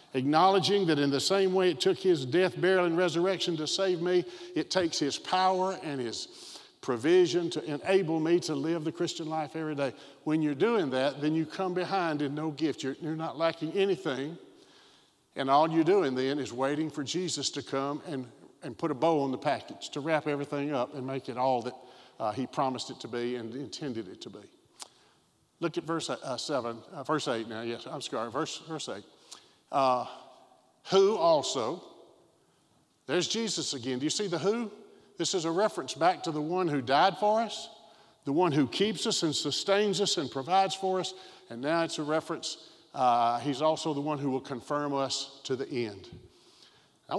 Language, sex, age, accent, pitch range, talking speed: English, male, 50-69, American, 140-190 Hz, 195 wpm